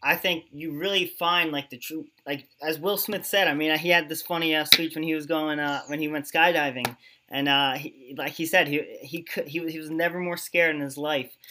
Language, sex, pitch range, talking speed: English, male, 145-180 Hz, 245 wpm